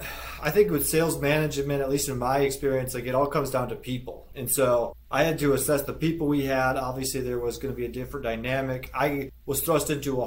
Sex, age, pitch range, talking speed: male, 30-49, 125-145 Hz, 235 wpm